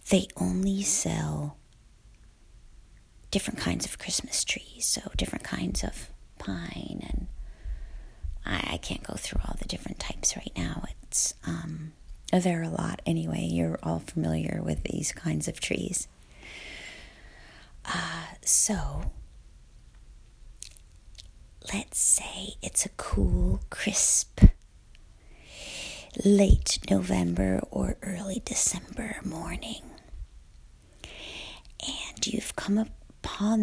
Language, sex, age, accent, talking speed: English, female, 40-59, American, 100 wpm